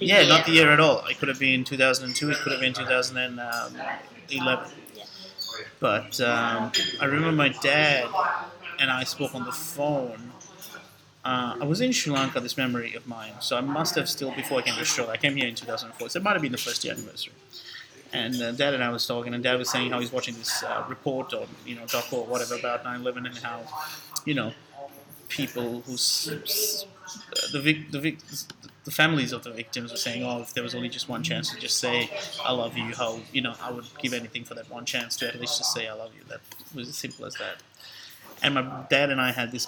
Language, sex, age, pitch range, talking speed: English, male, 30-49, 120-145 Hz, 235 wpm